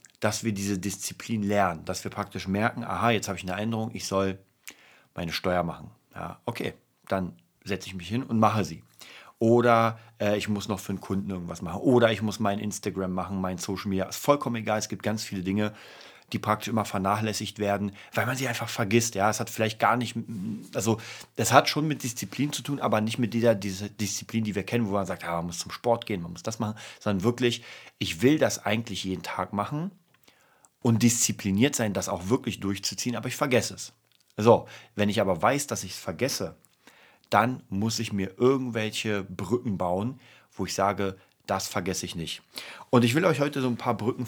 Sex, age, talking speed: male, 40-59, 210 wpm